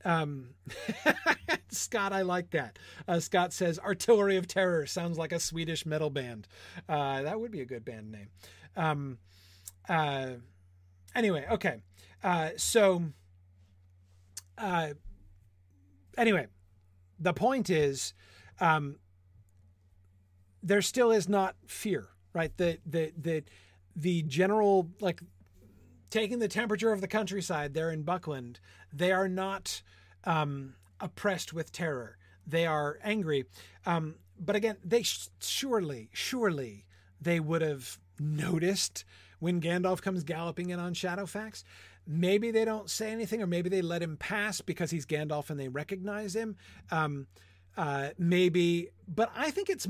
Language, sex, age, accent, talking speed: English, male, 40-59, American, 135 wpm